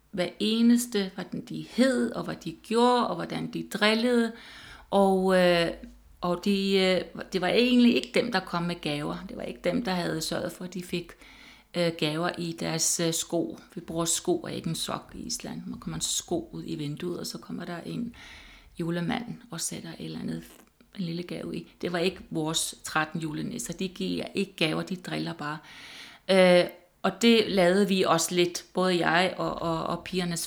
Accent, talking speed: native, 195 wpm